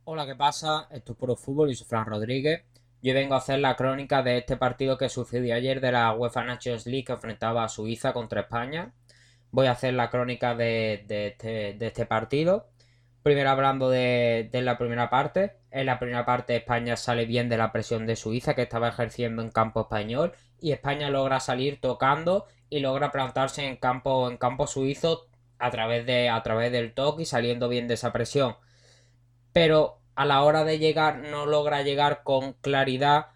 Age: 10-29